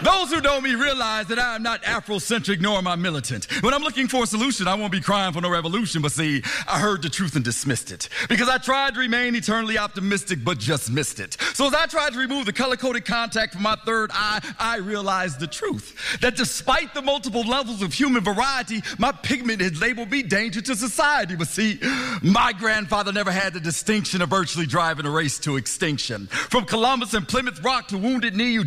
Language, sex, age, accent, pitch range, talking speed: English, male, 40-59, American, 180-250 Hz, 220 wpm